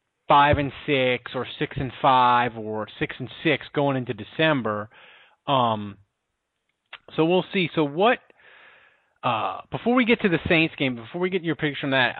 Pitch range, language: 125-160 Hz, English